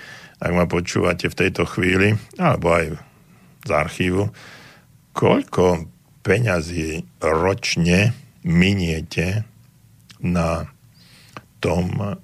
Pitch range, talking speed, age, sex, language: 90-120 Hz, 80 wpm, 60-79, male, Slovak